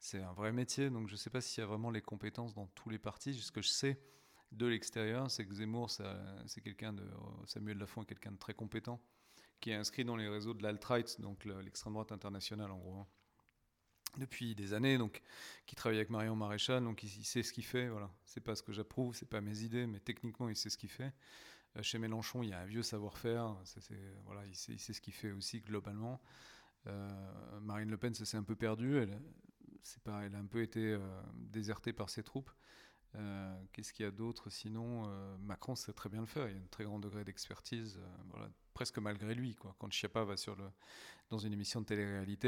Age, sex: 40-59, male